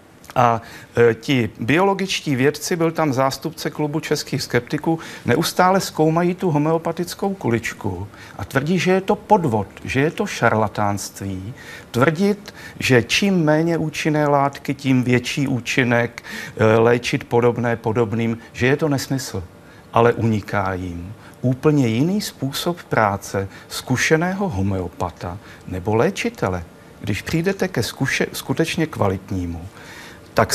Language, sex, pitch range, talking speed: Czech, male, 110-160 Hz, 115 wpm